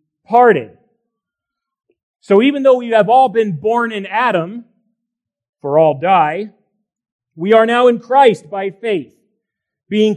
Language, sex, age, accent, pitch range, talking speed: English, male, 40-59, American, 185-235 Hz, 130 wpm